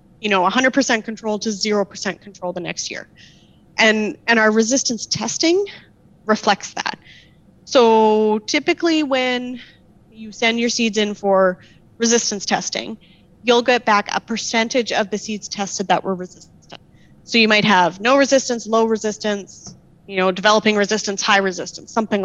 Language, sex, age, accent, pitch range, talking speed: English, female, 30-49, American, 195-235 Hz, 150 wpm